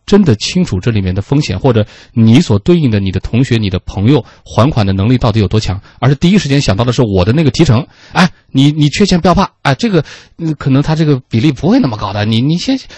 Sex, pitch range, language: male, 105-155 Hz, Chinese